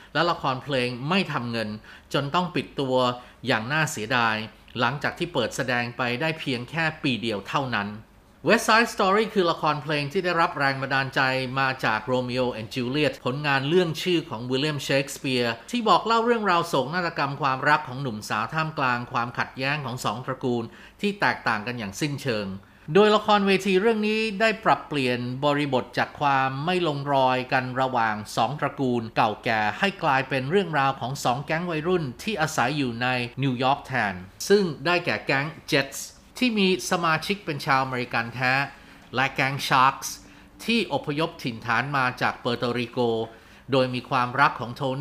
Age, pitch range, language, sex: 30-49, 125-160 Hz, Thai, male